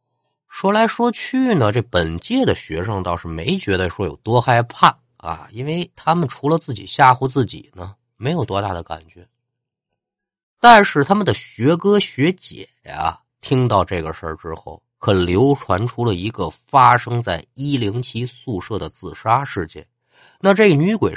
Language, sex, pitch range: Chinese, male, 95-145 Hz